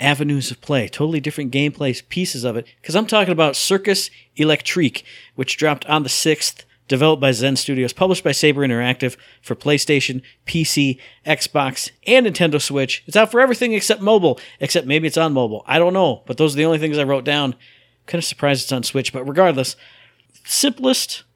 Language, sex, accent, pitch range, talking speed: English, male, American, 125-165 Hz, 190 wpm